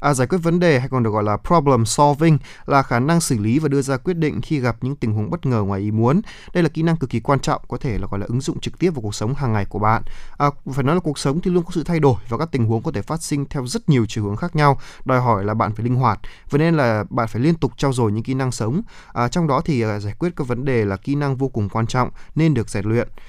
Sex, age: male, 20-39